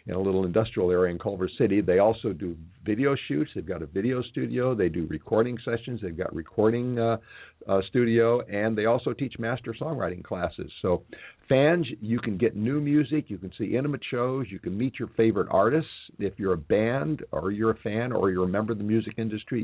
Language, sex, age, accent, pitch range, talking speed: English, male, 50-69, American, 95-125 Hz, 210 wpm